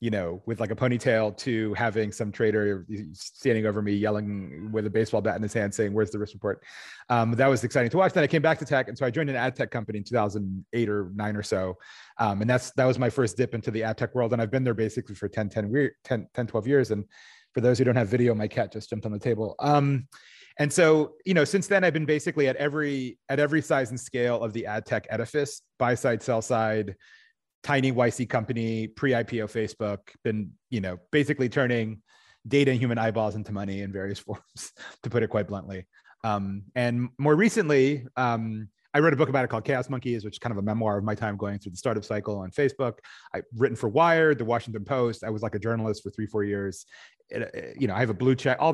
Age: 30-49